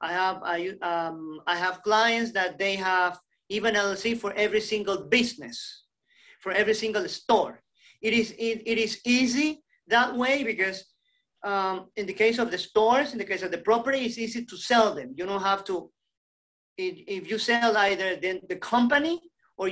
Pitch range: 180-230 Hz